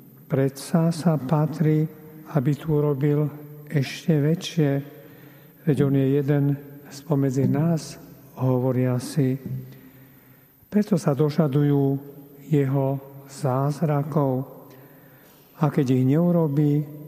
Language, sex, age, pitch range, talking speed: Slovak, male, 50-69, 135-155 Hz, 90 wpm